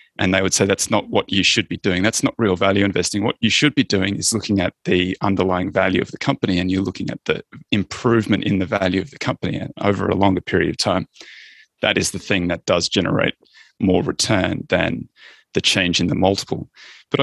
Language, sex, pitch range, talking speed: English, male, 95-115 Hz, 225 wpm